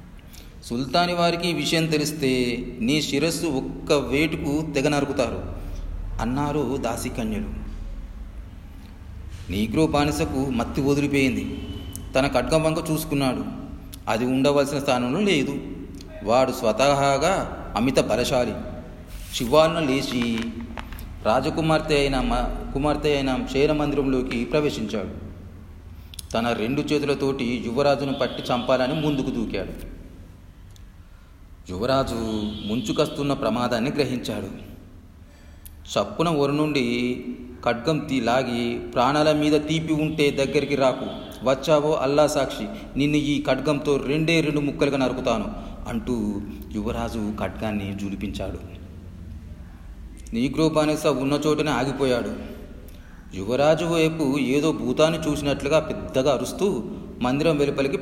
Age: 40-59